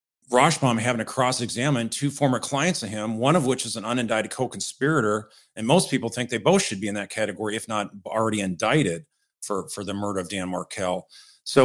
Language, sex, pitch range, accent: English, male, 110-135 Hz, American